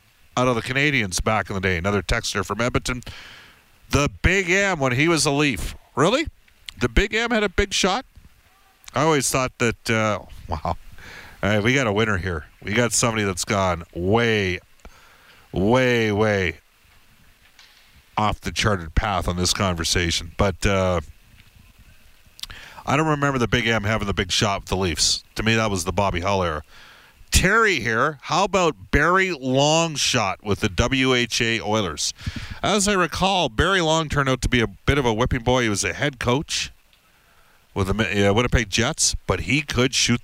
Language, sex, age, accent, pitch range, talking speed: English, male, 50-69, American, 95-140 Hz, 175 wpm